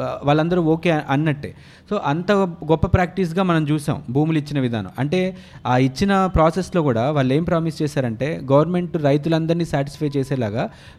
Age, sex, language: 30-49, male, Telugu